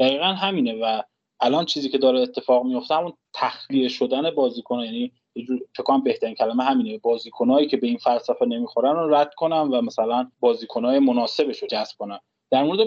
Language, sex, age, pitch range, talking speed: Persian, male, 20-39, 130-165 Hz, 170 wpm